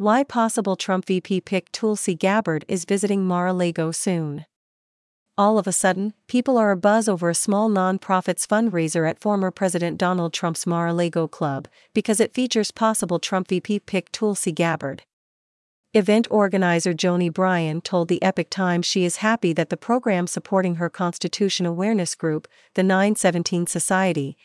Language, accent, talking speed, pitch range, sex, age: English, American, 150 wpm, 175-205 Hz, female, 40-59